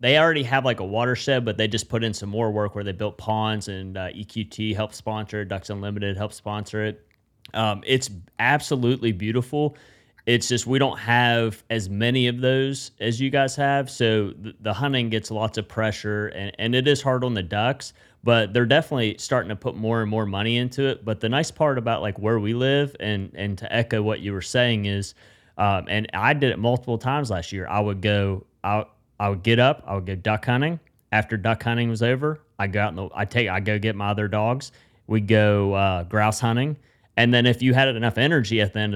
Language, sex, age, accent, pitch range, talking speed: English, male, 30-49, American, 105-125 Hz, 220 wpm